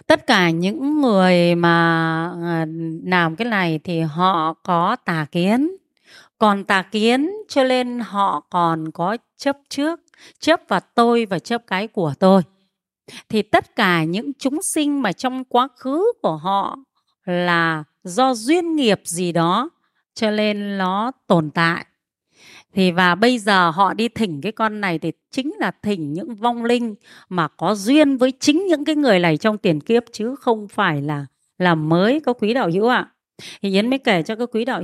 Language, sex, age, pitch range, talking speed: Vietnamese, female, 30-49, 175-245 Hz, 175 wpm